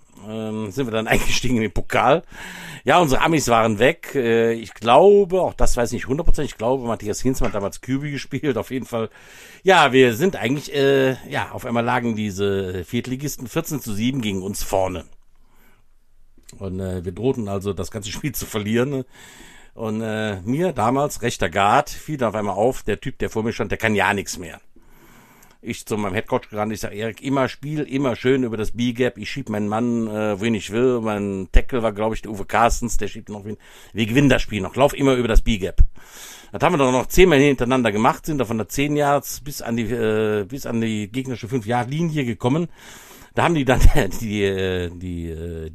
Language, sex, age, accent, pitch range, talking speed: German, male, 60-79, German, 105-130 Hz, 205 wpm